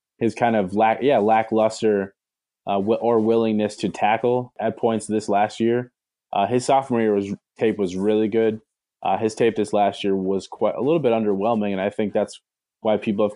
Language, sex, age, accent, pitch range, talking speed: English, male, 20-39, American, 100-115 Hz, 200 wpm